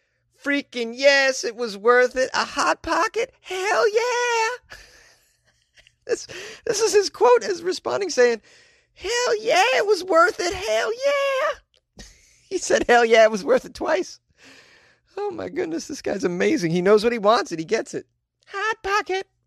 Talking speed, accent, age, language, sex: 165 wpm, American, 40-59, English, male